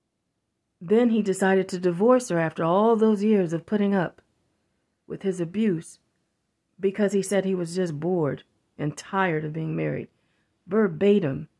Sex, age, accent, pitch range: female, 40-59, American, 165-195 Hz